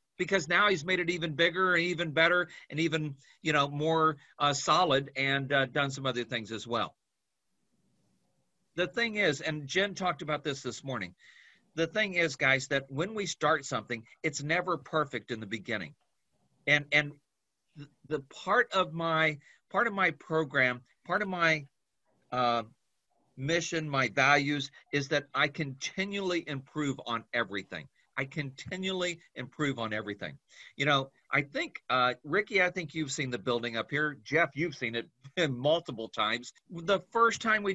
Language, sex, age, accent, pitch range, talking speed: English, male, 50-69, American, 135-180 Hz, 165 wpm